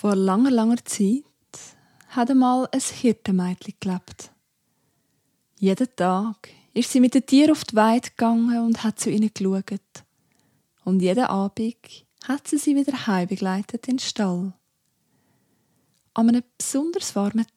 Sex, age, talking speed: female, 20-39, 145 wpm